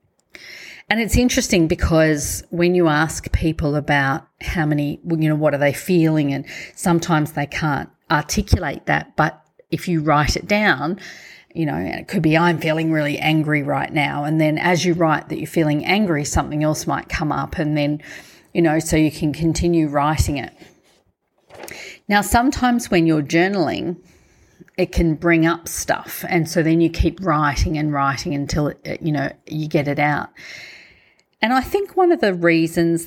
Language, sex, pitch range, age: English, female, 150-175 Hz, 40-59